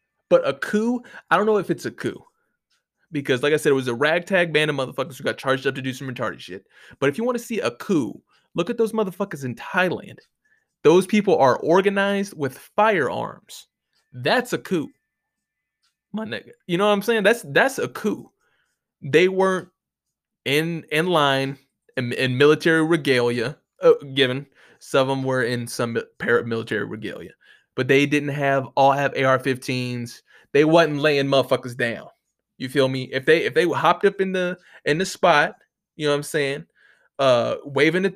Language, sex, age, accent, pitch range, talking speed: English, male, 20-39, American, 135-190 Hz, 185 wpm